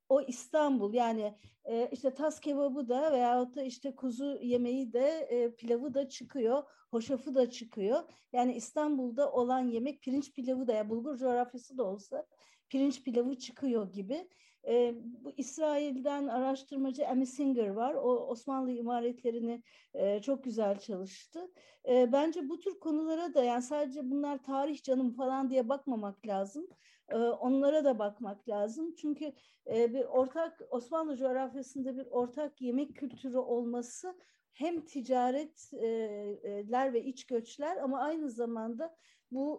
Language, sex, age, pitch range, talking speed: Turkish, female, 50-69, 235-280 Hz, 135 wpm